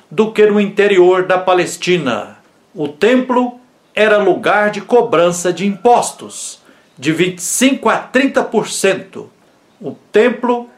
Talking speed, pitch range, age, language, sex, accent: 110 wpm, 185-225 Hz, 60-79, Portuguese, male, Brazilian